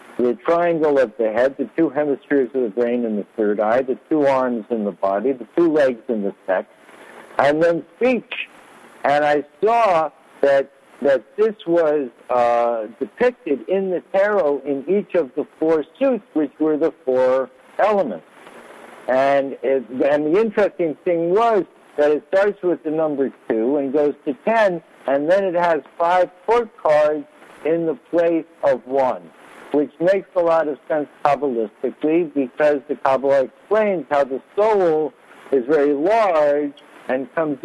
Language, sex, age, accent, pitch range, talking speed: English, male, 60-79, American, 135-170 Hz, 165 wpm